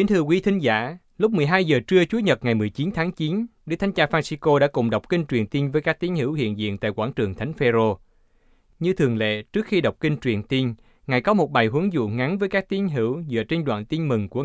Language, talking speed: Vietnamese, 260 wpm